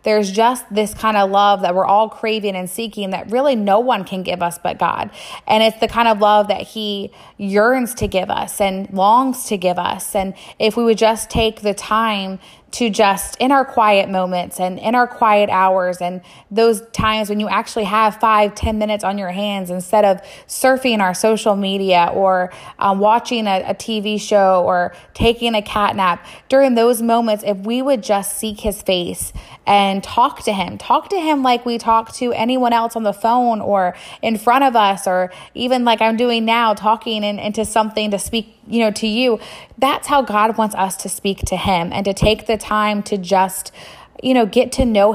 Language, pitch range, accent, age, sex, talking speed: English, 195-230 Hz, American, 20-39, female, 205 wpm